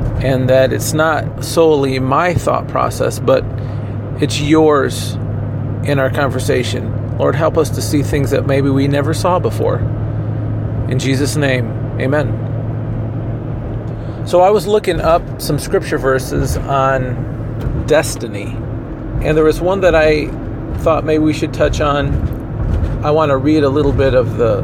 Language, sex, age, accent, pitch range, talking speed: English, male, 40-59, American, 120-145 Hz, 150 wpm